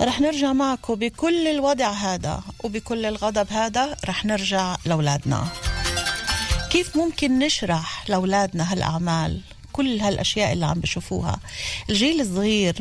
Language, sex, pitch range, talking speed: Hebrew, female, 155-220 Hz, 110 wpm